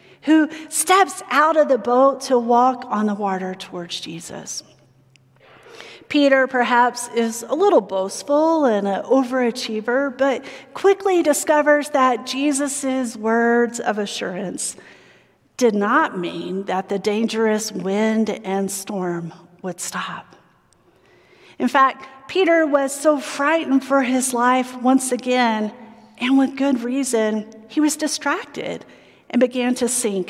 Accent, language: American, English